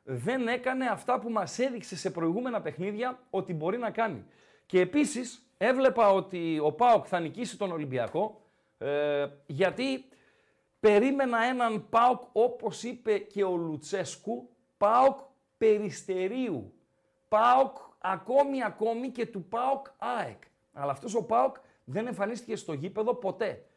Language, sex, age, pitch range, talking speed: Greek, male, 50-69, 180-230 Hz, 125 wpm